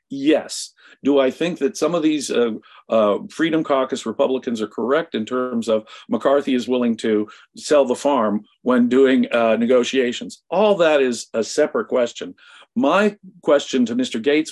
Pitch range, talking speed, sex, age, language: 110-155 Hz, 165 wpm, male, 50-69, English